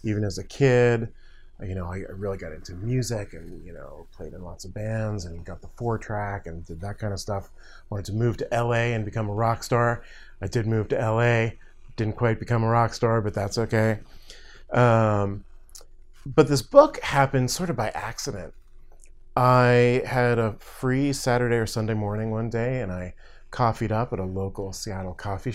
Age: 30-49